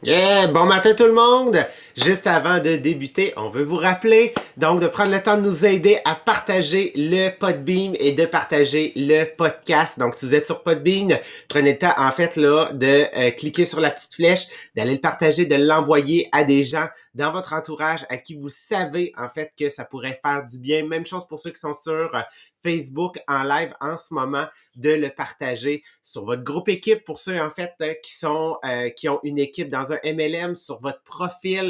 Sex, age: male, 30-49